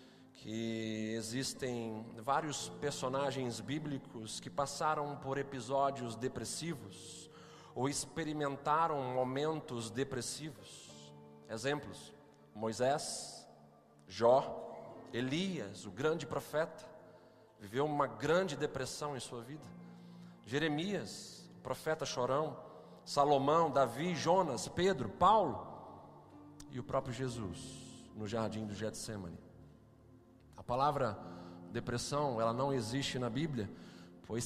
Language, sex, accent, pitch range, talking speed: Portuguese, male, Brazilian, 115-150 Hz, 95 wpm